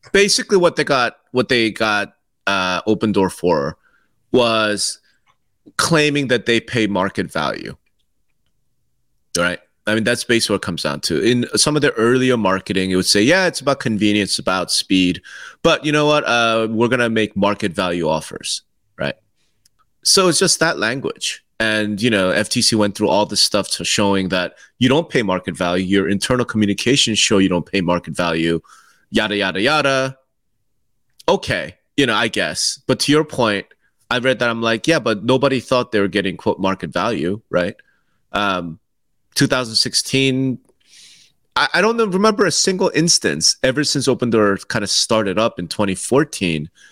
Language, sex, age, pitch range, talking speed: English, male, 30-49, 100-130 Hz, 170 wpm